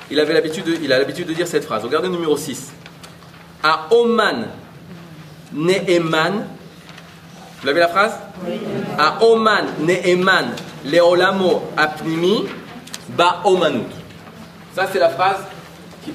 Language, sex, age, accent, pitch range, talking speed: French, male, 30-49, French, 160-200 Hz, 115 wpm